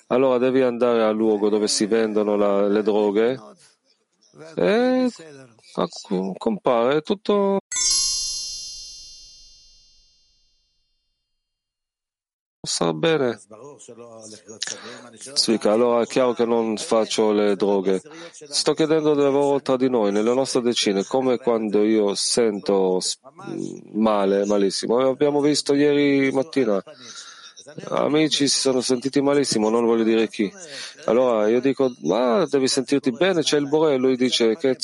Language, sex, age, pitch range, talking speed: Italian, male, 30-49, 110-140 Hz, 115 wpm